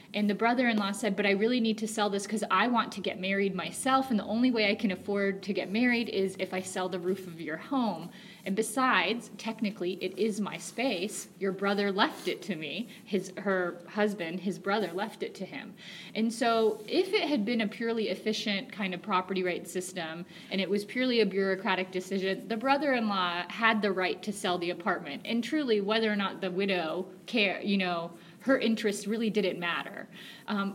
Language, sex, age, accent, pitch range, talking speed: English, female, 30-49, American, 190-220 Hz, 205 wpm